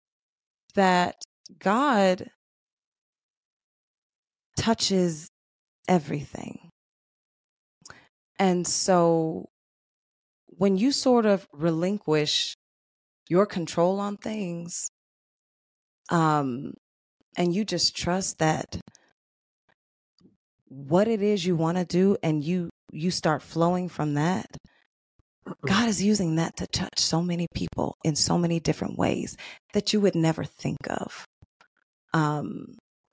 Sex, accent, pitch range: female, American, 160-190 Hz